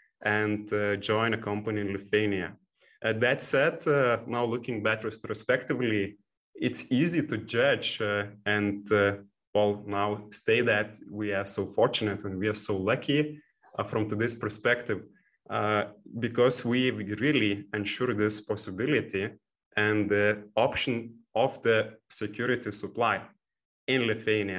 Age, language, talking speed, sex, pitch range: 20-39, English, 135 wpm, male, 105-120 Hz